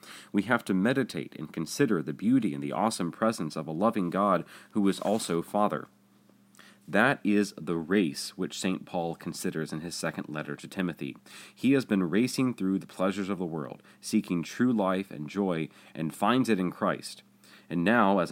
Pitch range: 80-100 Hz